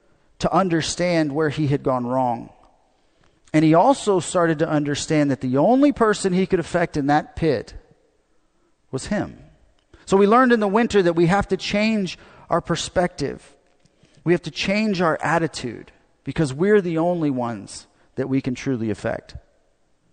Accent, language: American, English